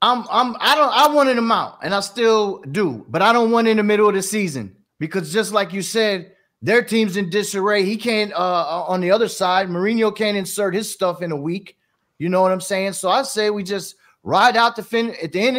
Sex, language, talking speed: male, English, 245 wpm